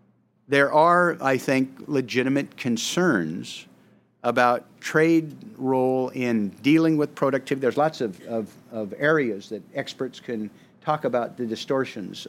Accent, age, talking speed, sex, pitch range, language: American, 50-69, 120 wpm, male, 110-140 Hz, English